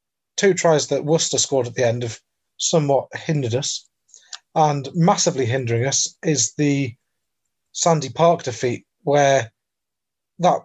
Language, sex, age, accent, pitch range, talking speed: English, male, 30-49, British, 120-155 Hz, 130 wpm